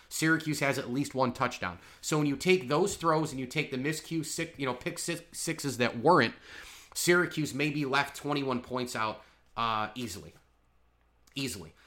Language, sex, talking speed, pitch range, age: English, male, 175 wpm, 115-150 Hz, 30-49